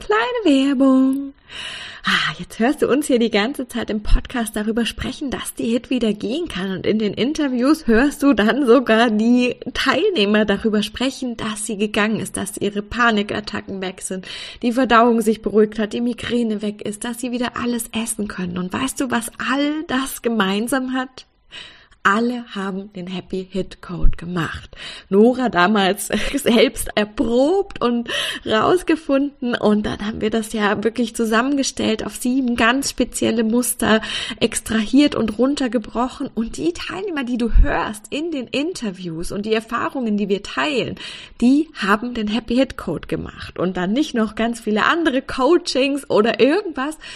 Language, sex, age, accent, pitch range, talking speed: German, female, 20-39, German, 210-265 Hz, 155 wpm